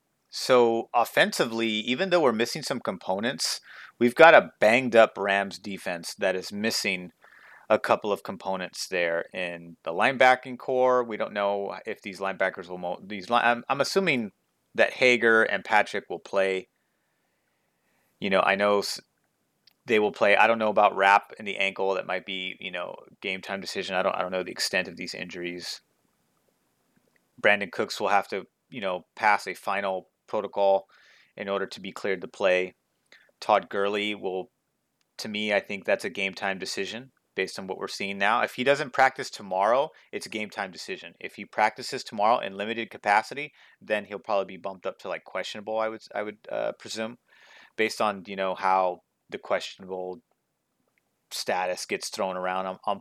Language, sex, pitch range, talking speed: English, male, 95-110 Hz, 180 wpm